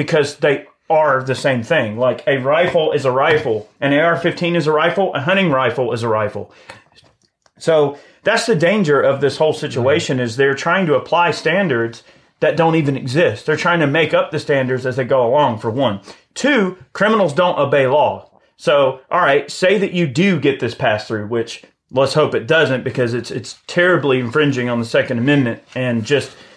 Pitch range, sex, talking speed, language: 130-160 Hz, male, 190 wpm, English